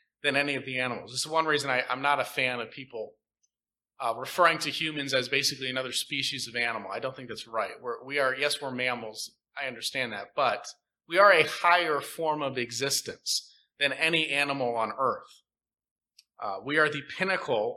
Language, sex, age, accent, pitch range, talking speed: English, male, 30-49, American, 125-155 Hz, 195 wpm